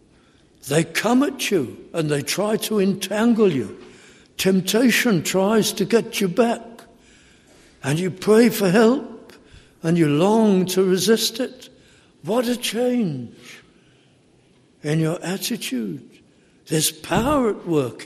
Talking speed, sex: 125 wpm, male